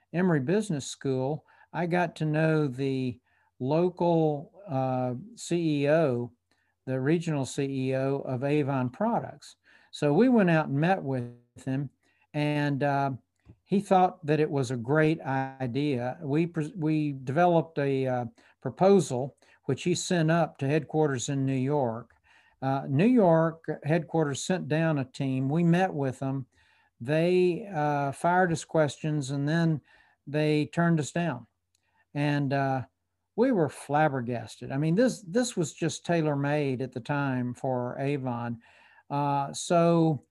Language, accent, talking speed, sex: English, American, 135 wpm, male